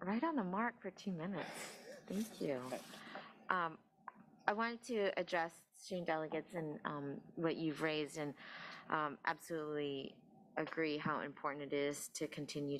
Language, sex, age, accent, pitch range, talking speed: English, female, 30-49, American, 135-155 Hz, 145 wpm